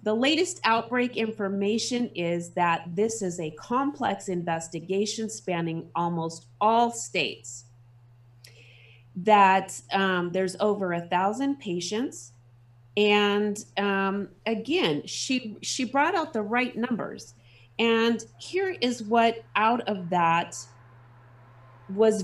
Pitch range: 145-225 Hz